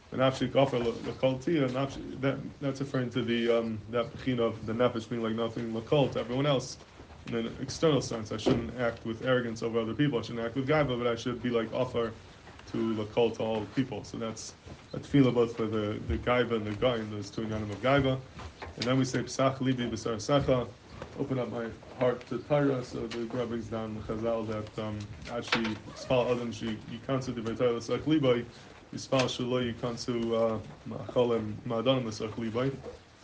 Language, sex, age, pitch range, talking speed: English, male, 20-39, 110-125 Hz, 175 wpm